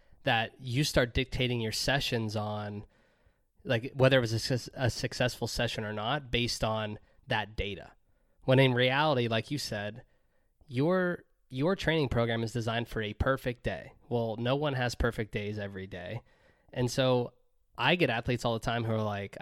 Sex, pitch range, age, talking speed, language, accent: male, 110-130 Hz, 20-39, 175 wpm, English, American